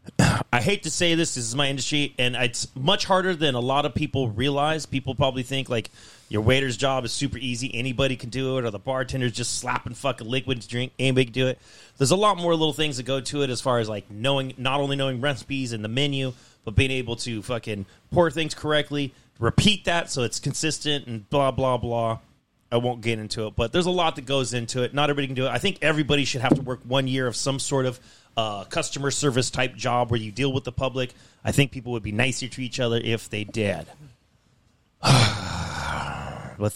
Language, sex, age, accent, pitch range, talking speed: English, male, 30-49, American, 115-145 Hz, 230 wpm